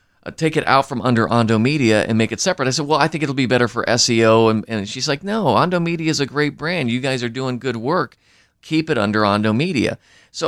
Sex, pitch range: male, 105-140 Hz